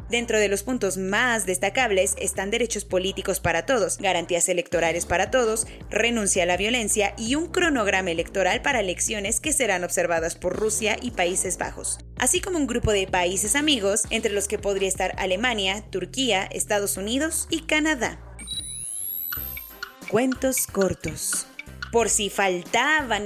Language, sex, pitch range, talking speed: English, female, 195-265 Hz, 145 wpm